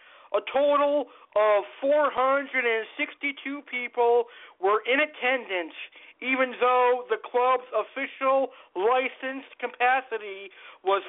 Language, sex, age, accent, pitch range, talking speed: English, male, 50-69, American, 215-270 Hz, 85 wpm